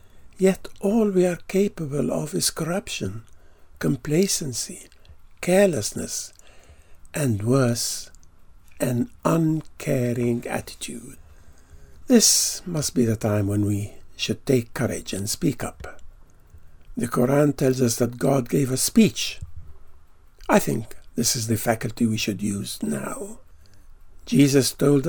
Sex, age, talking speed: male, 60-79, 115 wpm